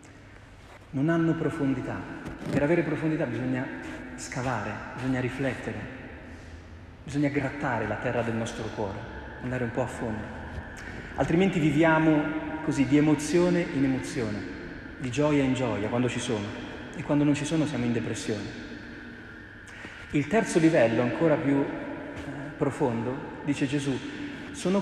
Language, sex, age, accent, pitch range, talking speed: Italian, male, 40-59, native, 110-150 Hz, 130 wpm